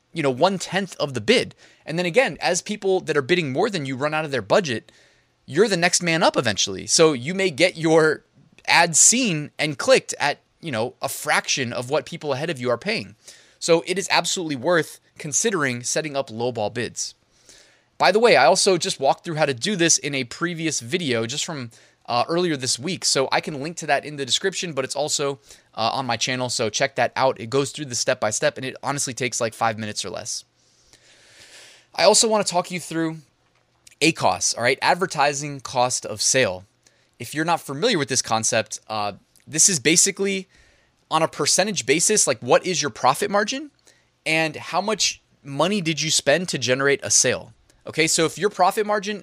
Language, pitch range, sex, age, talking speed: English, 130-180 Hz, male, 20-39, 210 wpm